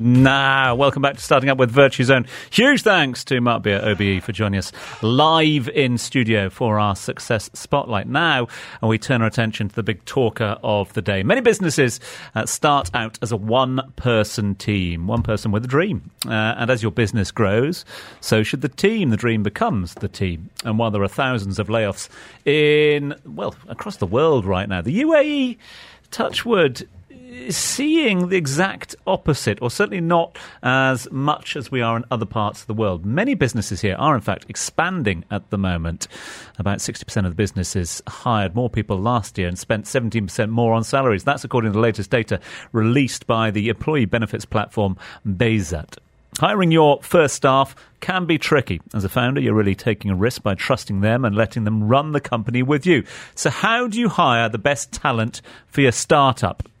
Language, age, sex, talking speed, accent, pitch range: English, 40-59, male, 190 wpm, British, 105-140 Hz